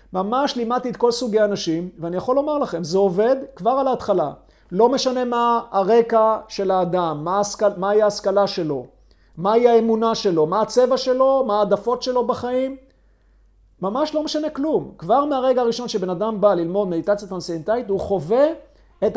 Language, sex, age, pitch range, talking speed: Hebrew, male, 50-69, 185-235 Hz, 160 wpm